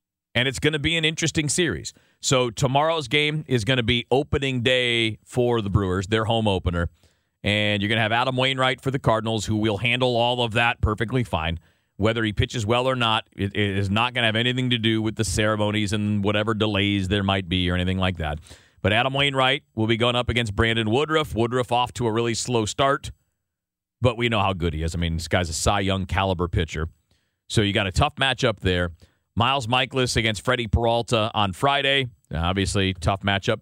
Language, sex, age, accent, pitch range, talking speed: English, male, 40-59, American, 95-120 Hz, 215 wpm